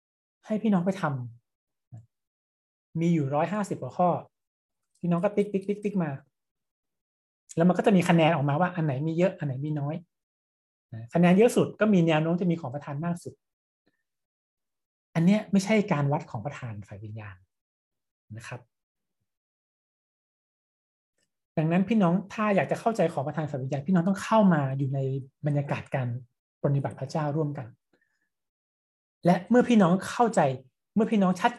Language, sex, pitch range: Thai, male, 135-190 Hz